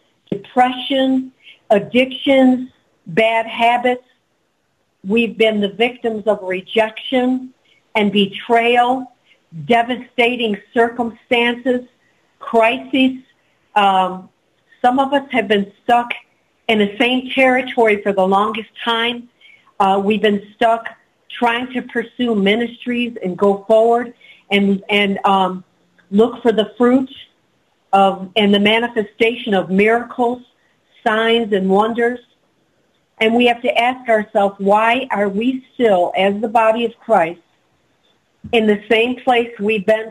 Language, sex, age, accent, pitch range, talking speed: English, female, 50-69, American, 210-245 Hz, 115 wpm